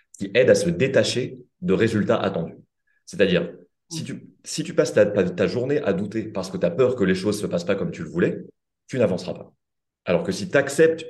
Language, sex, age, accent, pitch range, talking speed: French, male, 30-49, French, 105-175 Hz, 225 wpm